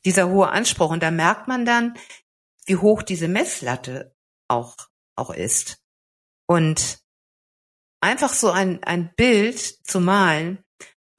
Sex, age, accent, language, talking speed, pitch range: female, 50-69, German, German, 125 wpm, 150-200 Hz